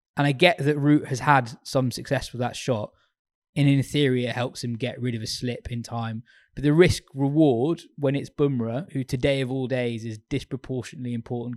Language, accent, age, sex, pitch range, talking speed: English, British, 20-39, male, 125-155 Hz, 205 wpm